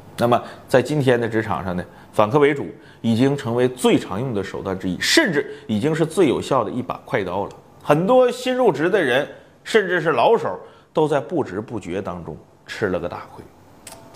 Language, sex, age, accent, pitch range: Chinese, male, 30-49, native, 120-195 Hz